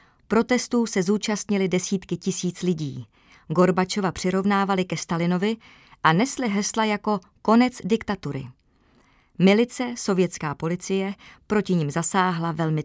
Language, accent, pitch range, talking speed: Czech, native, 170-220 Hz, 105 wpm